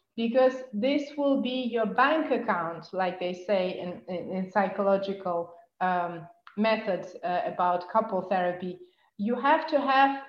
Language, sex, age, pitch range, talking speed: English, female, 30-49, 205-260 Hz, 140 wpm